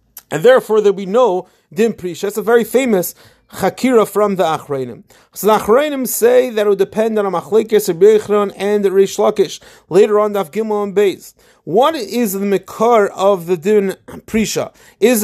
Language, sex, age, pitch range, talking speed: English, male, 30-49, 185-225 Hz, 175 wpm